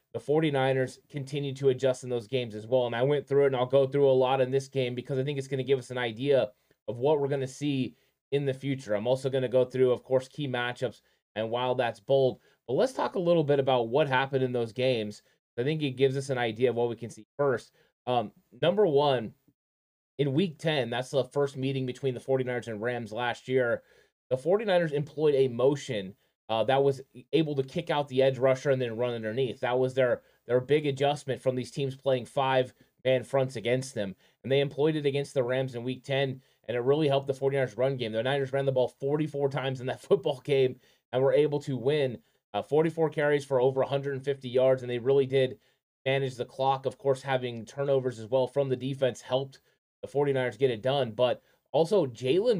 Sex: male